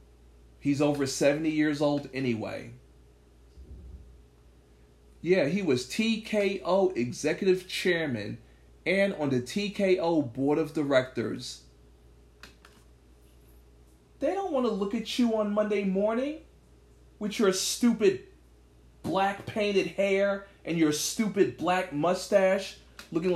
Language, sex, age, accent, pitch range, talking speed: English, male, 40-59, American, 125-205 Hz, 105 wpm